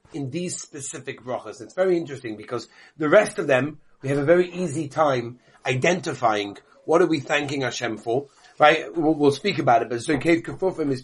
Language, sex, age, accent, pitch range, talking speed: English, male, 40-59, British, 155-205 Hz, 190 wpm